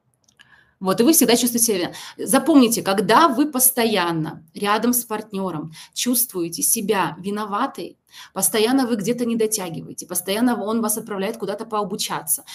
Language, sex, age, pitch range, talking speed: Russian, female, 20-39, 180-225 Hz, 135 wpm